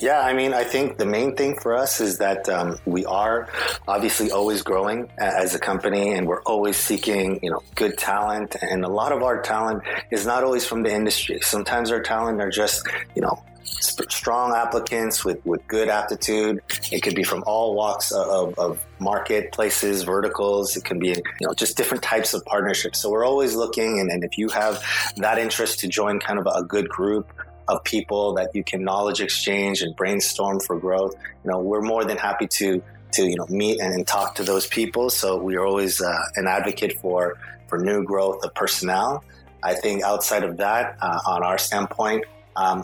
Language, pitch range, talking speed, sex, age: English, 95-110 Hz, 200 wpm, male, 30-49